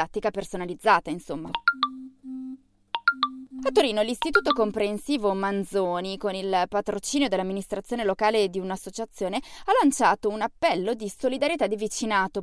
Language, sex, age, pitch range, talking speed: Italian, female, 20-39, 200-260 Hz, 110 wpm